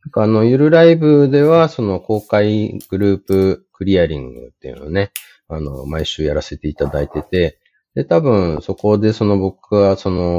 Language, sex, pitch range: Japanese, male, 85-105 Hz